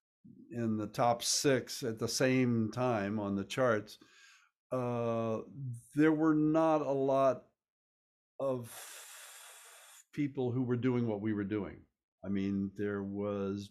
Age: 60-79